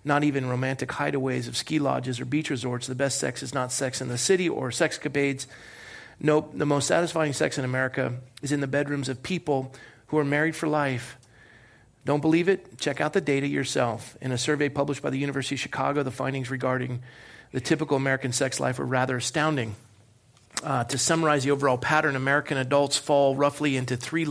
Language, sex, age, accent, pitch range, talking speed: English, male, 40-59, American, 130-145 Hz, 195 wpm